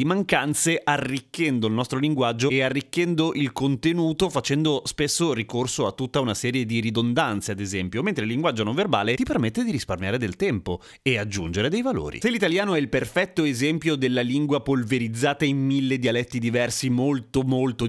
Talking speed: 170 wpm